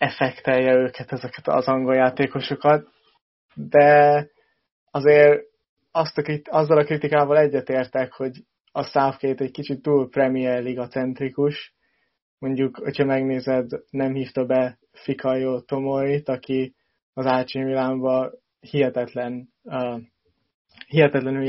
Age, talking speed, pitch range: 20-39, 100 wpm, 130-140 Hz